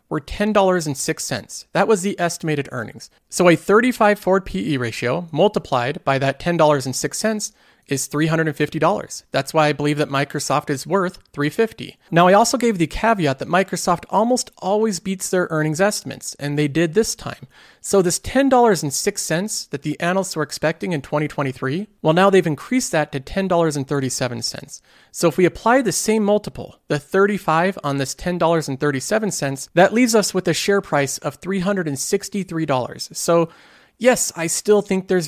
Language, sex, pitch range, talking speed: English, male, 145-195 Hz, 155 wpm